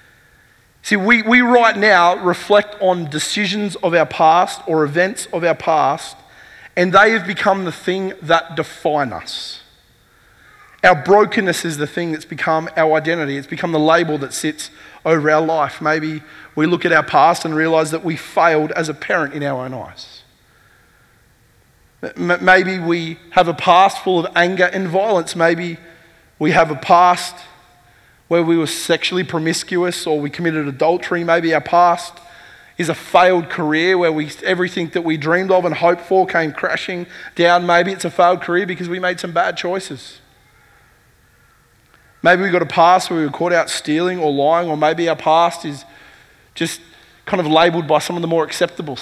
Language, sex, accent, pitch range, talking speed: English, male, Australian, 155-180 Hz, 175 wpm